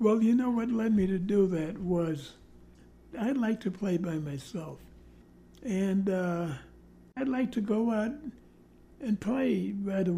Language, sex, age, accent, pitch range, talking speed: English, male, 60-79, American, 170-205 Hz, 160 wpm